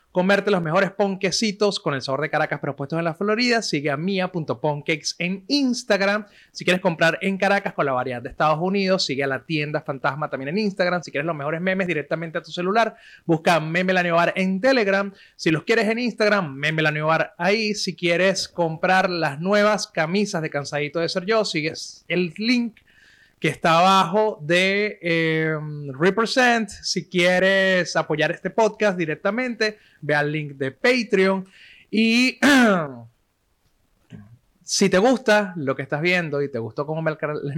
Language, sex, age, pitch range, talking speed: Spanish, male, 30-49, 150-195 Hz, 165 wpm